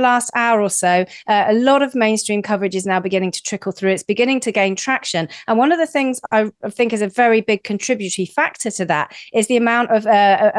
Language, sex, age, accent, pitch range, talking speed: English, female, 40-59, British, 185-230 Hz, 230 wpm